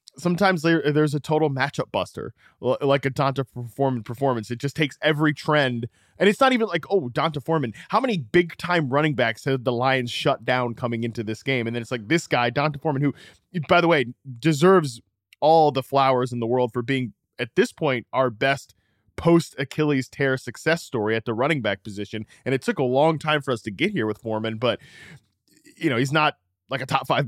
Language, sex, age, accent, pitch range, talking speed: English, male, 20-39, American, 115-155 Hz, 210 wpm